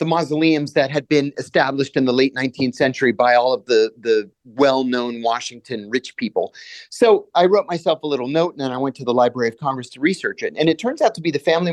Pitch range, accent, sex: 135-200 Hz, American, male